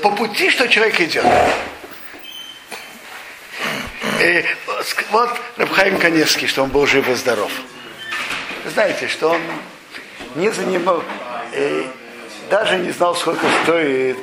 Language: Russian